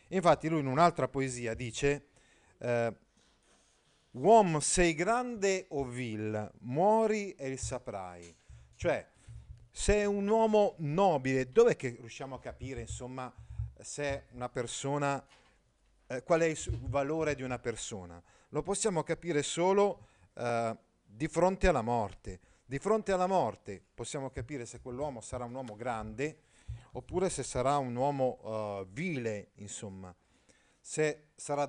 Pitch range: 110-150 Hz